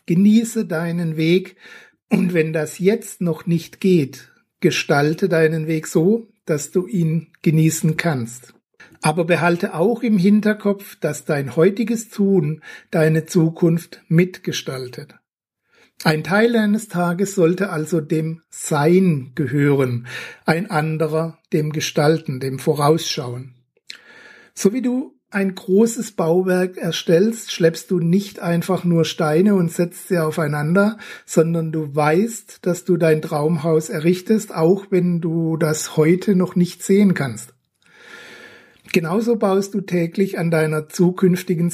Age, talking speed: 60-79, 125 wpm